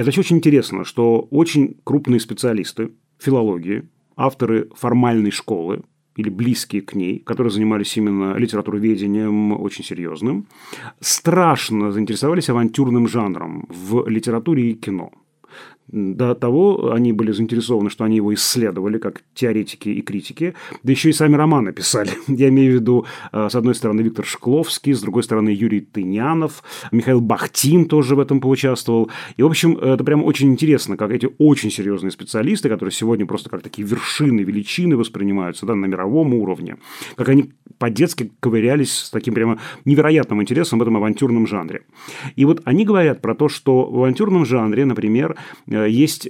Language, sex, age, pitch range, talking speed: Russian, male, 30-49, 105-145 Hz, 150 wpm